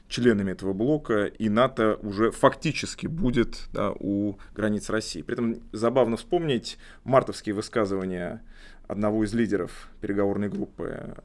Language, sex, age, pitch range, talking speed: Russian, male, 30-49, 100-120 Hz, 115 wpm